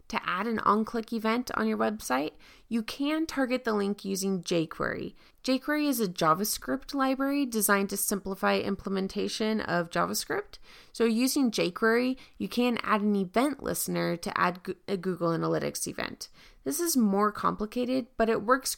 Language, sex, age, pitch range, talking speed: English, female, 20-39, 180-225 Hz, 155 wpm